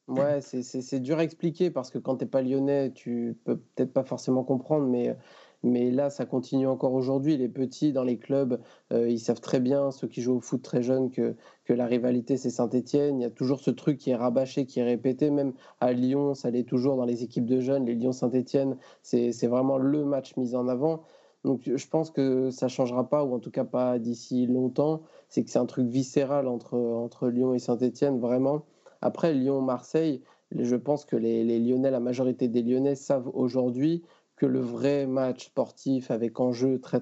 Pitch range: 125-135 Hz